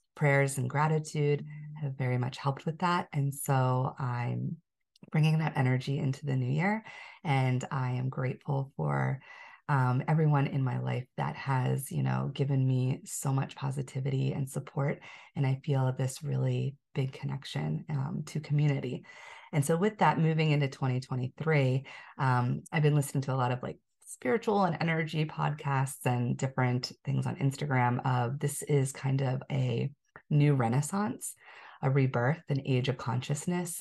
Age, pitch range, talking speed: 30-49, 130-150 Hz, 160 wpm